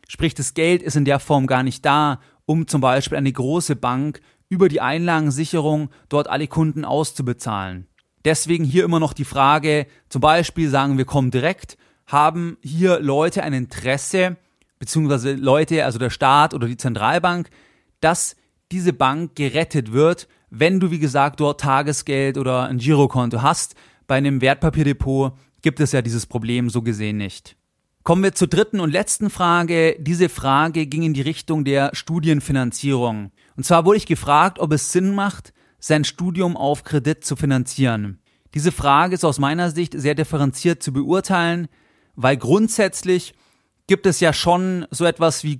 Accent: German